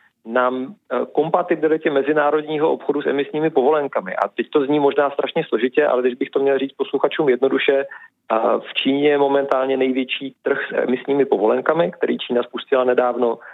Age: 40-59